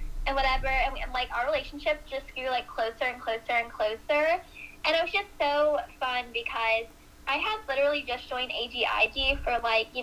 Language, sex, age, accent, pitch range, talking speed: English, female, 10-29, American, 235-290 Hz, 185 wpm